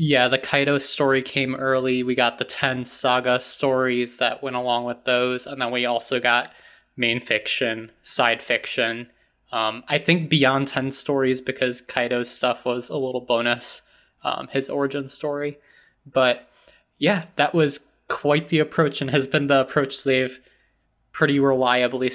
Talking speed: 155 wpm